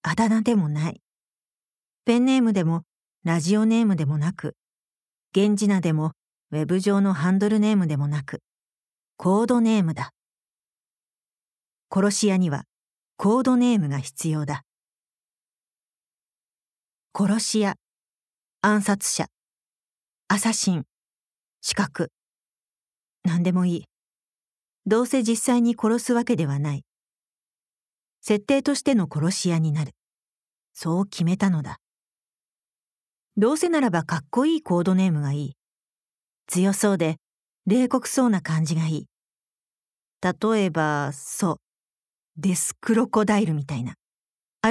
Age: 40-59